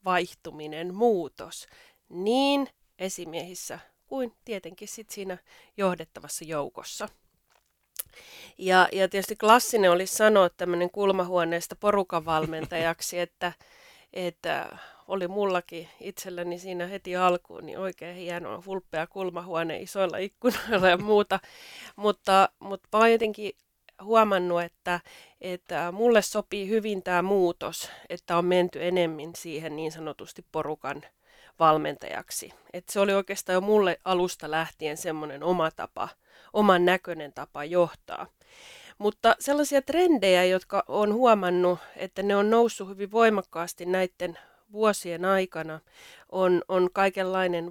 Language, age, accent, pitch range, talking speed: Finnish, 30-49, native, 170-205 Hz, 115 wpm